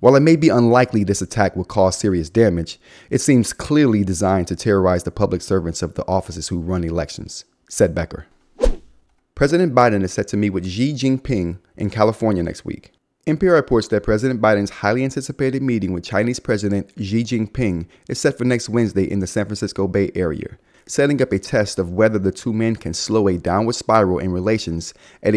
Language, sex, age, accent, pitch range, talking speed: English, male, 30-49, American, 95-120 Hz, 195 wpm